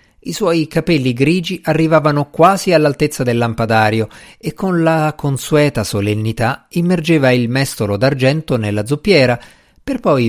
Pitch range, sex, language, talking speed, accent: 110-160 Hz, male, Italian, 130 wpm, native